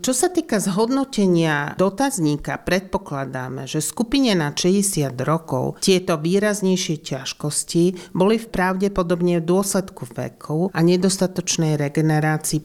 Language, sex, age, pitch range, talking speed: Slovak, male, 40-59, 145-180 Hz, 110 wpm